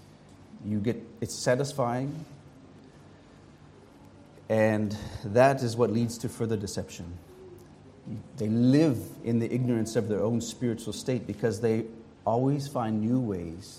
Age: 30-49